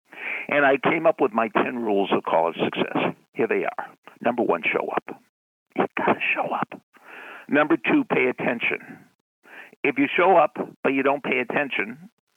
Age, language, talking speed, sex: 60-79, English, 175 wpm, male